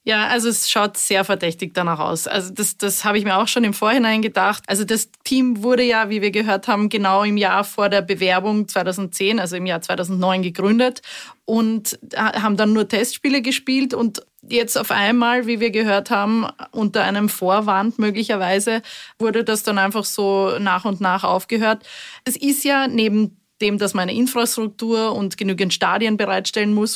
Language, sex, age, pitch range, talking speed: German, female, 20-39, 190-225 Hz, 180 wpm